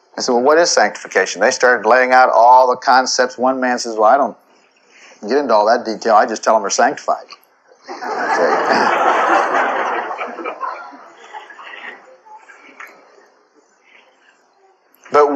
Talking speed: 125 wpm